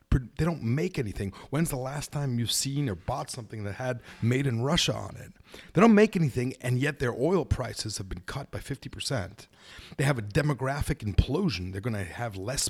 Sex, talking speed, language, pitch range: male, 210 wpm, English, 105-135 Hz